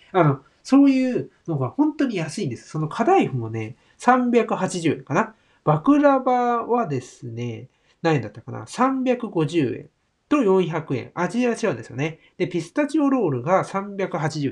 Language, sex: Japanese, male